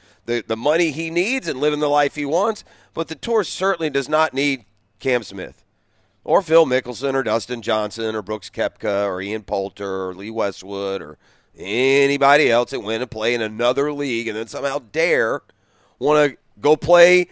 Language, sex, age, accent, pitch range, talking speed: English, male, 40-59, American, 115-160 Hz, 185 wpm